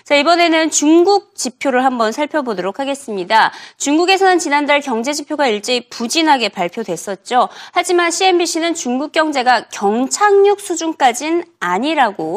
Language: Korean